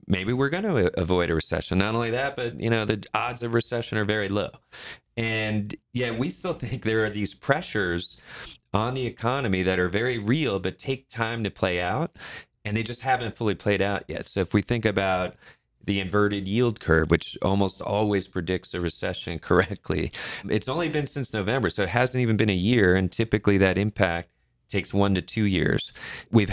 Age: 30-49